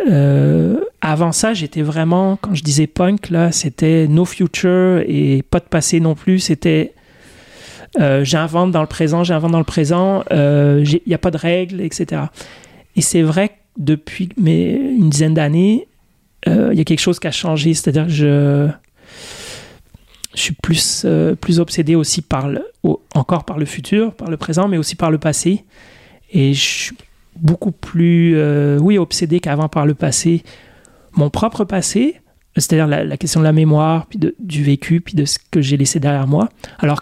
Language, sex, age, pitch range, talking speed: French, male, 30-49, 150-180 Hz, 190 wpm